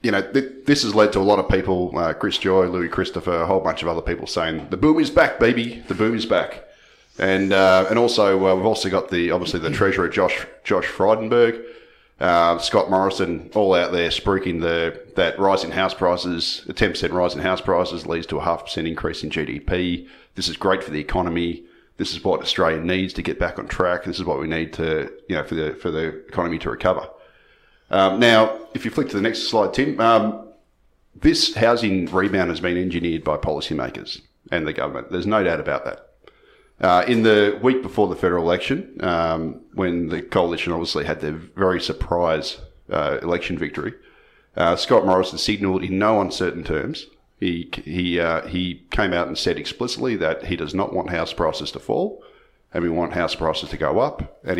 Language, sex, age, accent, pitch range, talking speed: English, male, 30-49, Australian, 85-105 Hz, 205 wpm